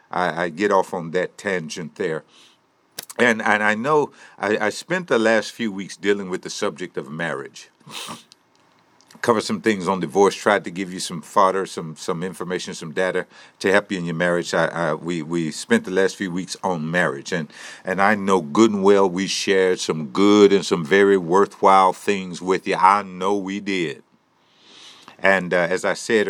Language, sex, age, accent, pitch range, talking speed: English, male, 50-69, American, 90-100 Hz, 195 wpm